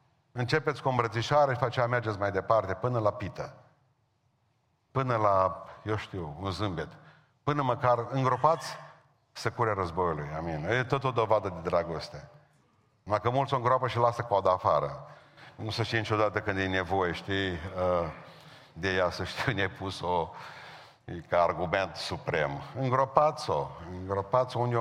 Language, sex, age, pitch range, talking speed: Romanian, male, 50-69, 100-130 Hz, 145 wpm